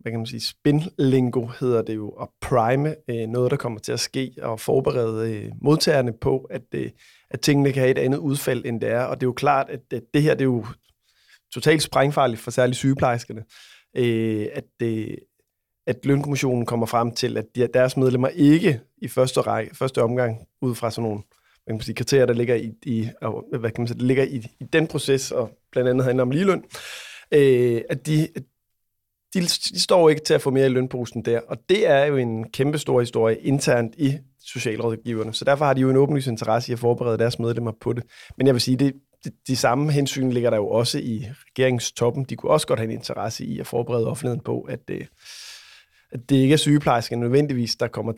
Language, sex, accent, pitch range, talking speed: Danish, male, native, 115-135 Hz, 220 wpm